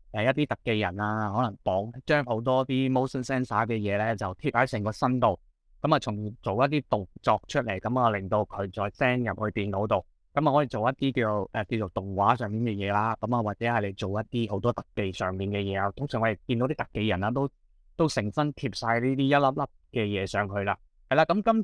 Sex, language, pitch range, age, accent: male, Chinese, 105-135 Hz, 20-39, native